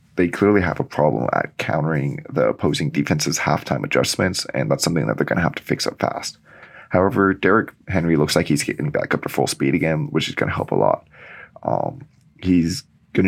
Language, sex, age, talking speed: English, male, 20-39, 210 wpm